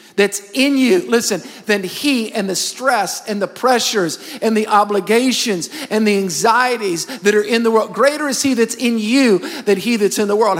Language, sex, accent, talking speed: English, male, American, 200 wpm